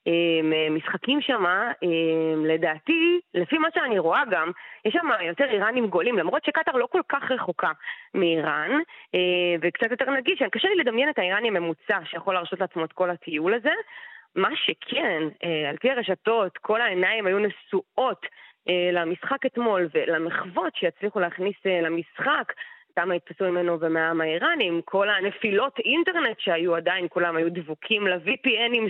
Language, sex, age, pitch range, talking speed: Hebrew, female, 20-39, 170-270 Hz, 135 wpm